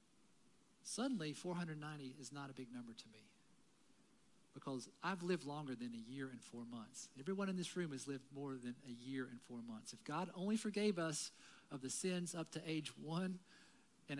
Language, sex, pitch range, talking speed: English, male, 120-165 Hz, 190 wpm